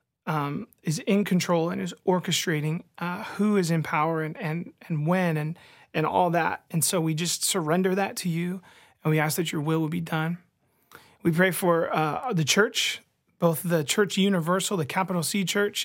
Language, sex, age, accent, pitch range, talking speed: English, male, 30-49, American, 160-190 Hz, 195 wpm